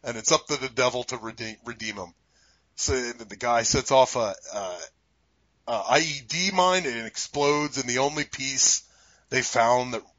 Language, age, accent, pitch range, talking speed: English, 30-49, American, 125-165 Hz, 175 wpm